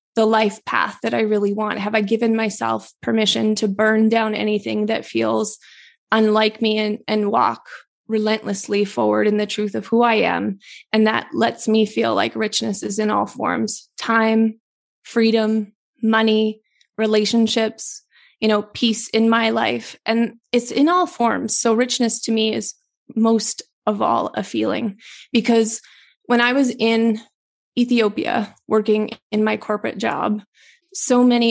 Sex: female